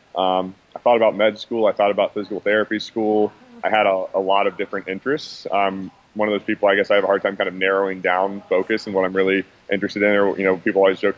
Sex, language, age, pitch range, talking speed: male, English, 20-39, 95-105 Hz, 265 wpm